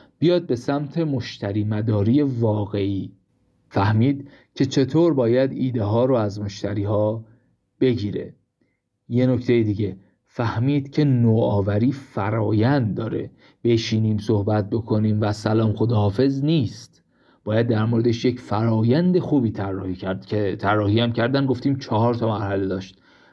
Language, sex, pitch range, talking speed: Persian, male, 105-135 Hz, 125 wpm